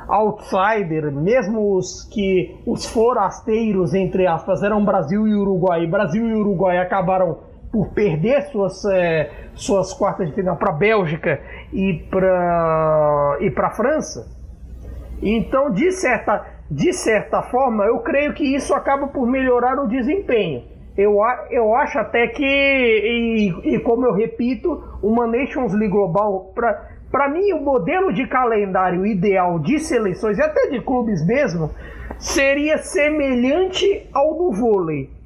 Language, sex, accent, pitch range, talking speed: Portuguese, male, Brazilian, 195-270 Hz, 140 wpm